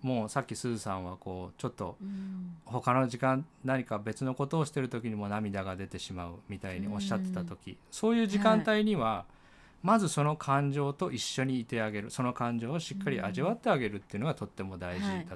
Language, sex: Japanese, male